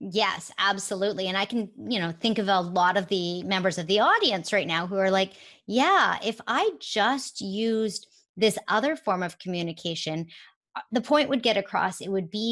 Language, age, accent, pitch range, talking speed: English, 30-49, American, 170-220 Hz, 190 wpm